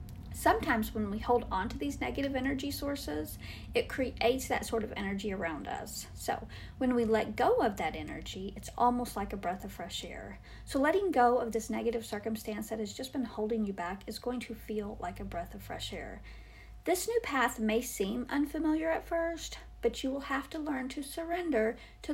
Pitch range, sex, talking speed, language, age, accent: 220-265 Hz, female, 205 wpm, English, 50-69, American